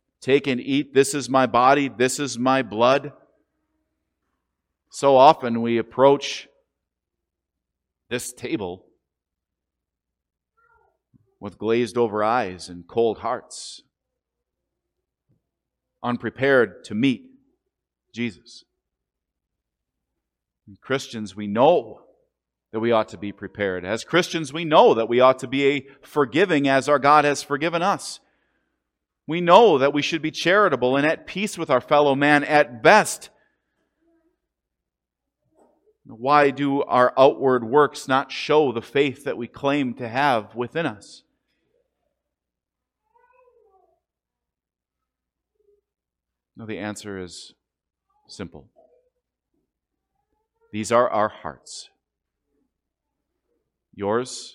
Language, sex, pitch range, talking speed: English, male, 110-165 Hz, 105 wpm